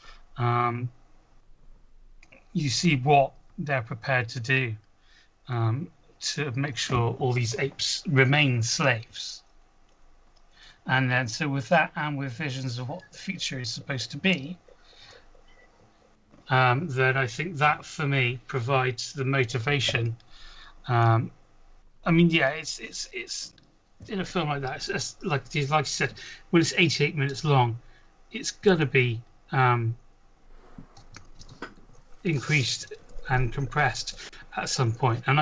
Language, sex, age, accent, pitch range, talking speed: English, male, 40-59, British, 120-150 Hz, 130 wpm